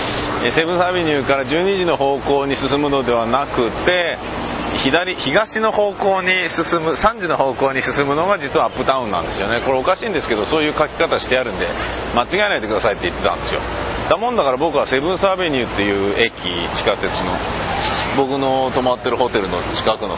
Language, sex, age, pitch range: Japanese, male, 30-49, 115-180 Hz